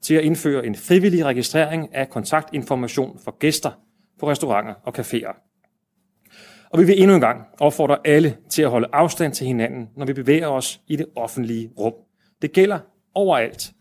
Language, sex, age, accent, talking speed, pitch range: Danish, male, 30-49, native, 170 wpm, 135-180 Hz